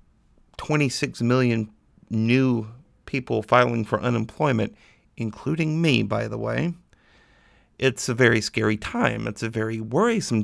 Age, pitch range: 50-69, 110-150 Hz